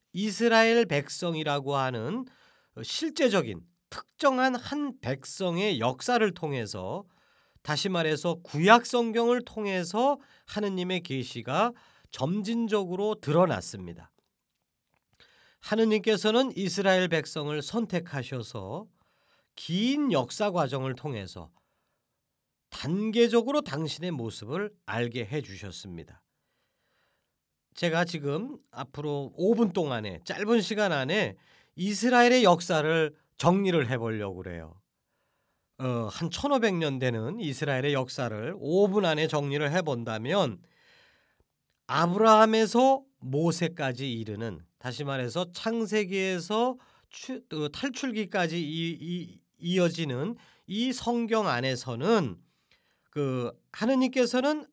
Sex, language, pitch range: male, Korean, 135-220 Hz